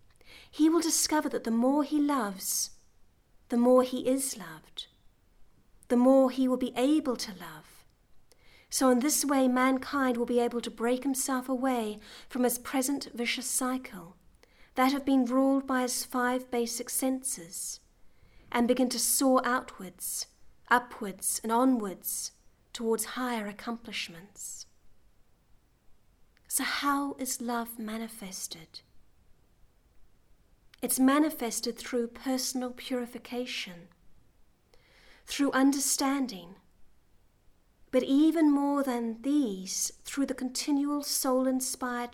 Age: 40-59